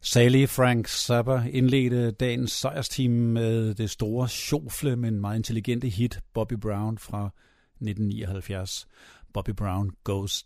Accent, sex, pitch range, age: native, male, 110-140 Hz, 50-69